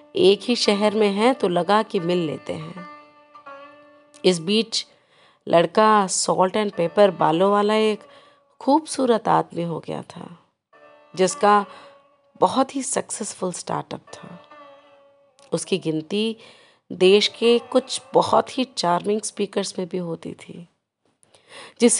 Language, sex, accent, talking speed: Hindi, female, native, 125 wpm